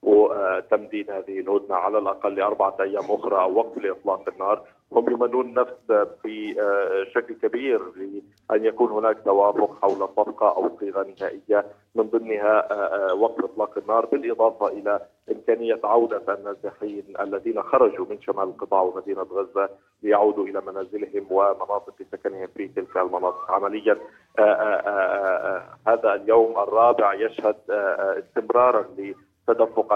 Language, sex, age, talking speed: Arabic, male, 40-59, 120 wpm